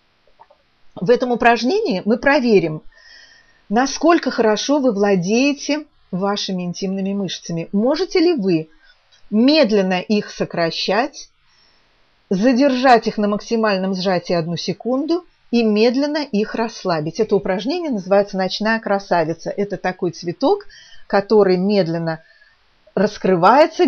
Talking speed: 100 wpm